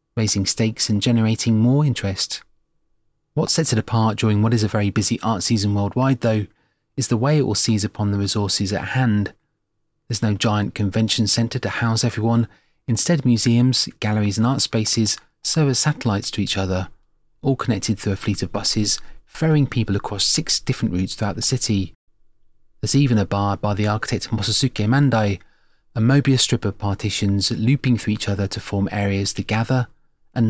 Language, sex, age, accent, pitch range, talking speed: English, male, 30-49, British, 105-120 Hz, 180 wpm